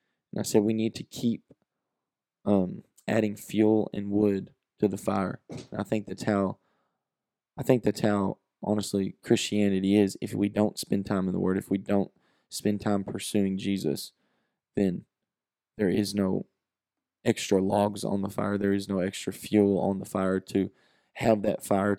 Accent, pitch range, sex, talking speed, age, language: American, 100-110 Hz, male, 170 wpm, 20-39, English